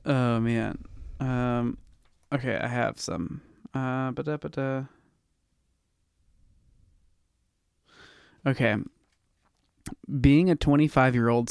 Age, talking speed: 20-39, 65 wpm